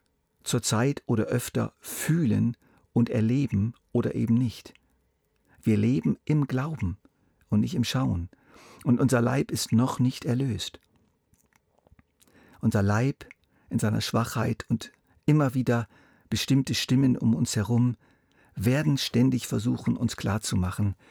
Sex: male